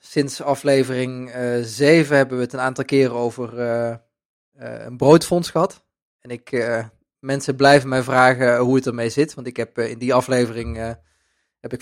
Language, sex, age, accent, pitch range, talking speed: Dutch, male, 20-39, Dutch, 115-135 Hz, 190 wpm